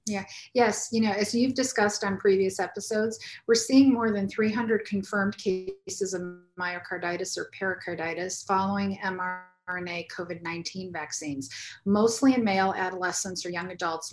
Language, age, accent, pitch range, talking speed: English, 40-59, American, 180-215 Hz, 135 wpm